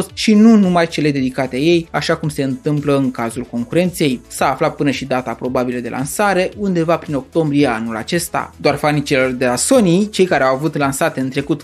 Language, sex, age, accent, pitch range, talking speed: Romanian, male, 20-39, native, 145-190 Hz, 200 wpm